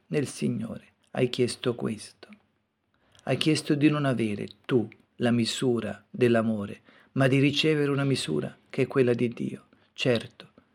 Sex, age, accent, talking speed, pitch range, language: male, 50-69, native, 140 wpm, 120-145 Hz, Italian